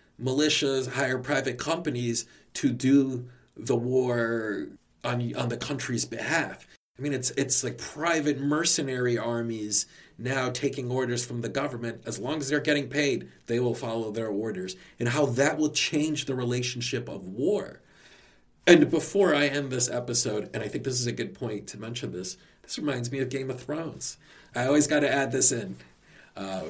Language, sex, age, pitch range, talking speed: English, male, 40-59, 110-135 Hz, 180 wpm